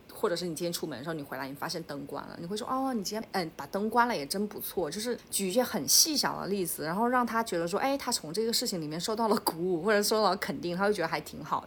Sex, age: female, 30-49